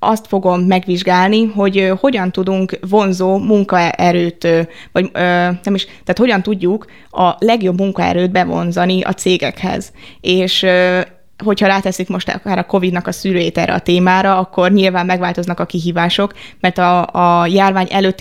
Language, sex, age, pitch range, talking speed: Hungarian, female, 20-39, 175-200 Hz, 140 wpm